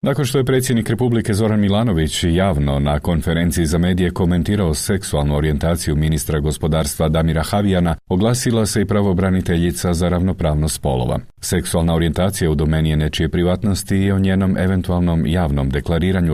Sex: male